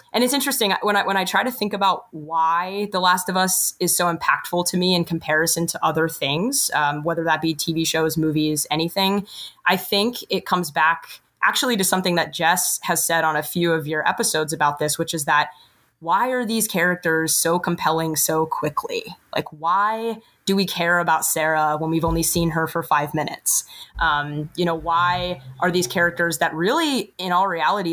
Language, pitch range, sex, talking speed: English, 160-185 Hz, female, 200 wpm